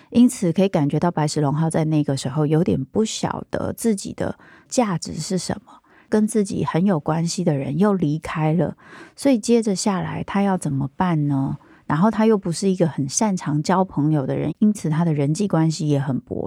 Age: 30-49